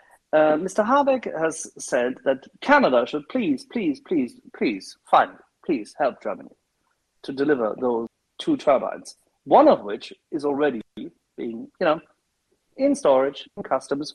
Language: English